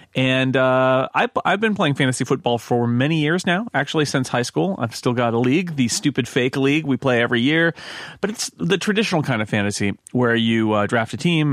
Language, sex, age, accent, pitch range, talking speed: English, male, 30-49, American, 115-140 Hz, 220 wpm